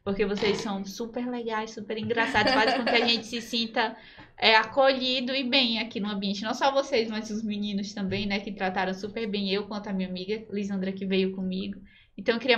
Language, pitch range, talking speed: Portuguese, 205-240 Hz, 215 wpm